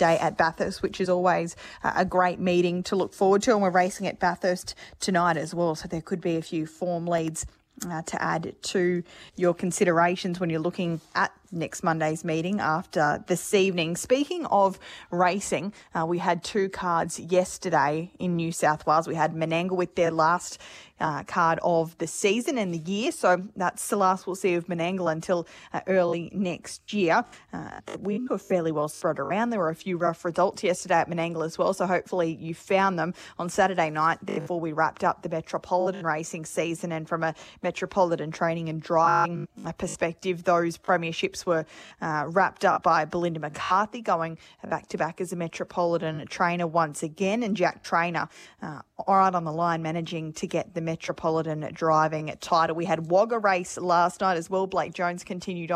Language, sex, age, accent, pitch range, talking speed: English, female, 20-39, Australian, 165-185 Hz, 185 wpm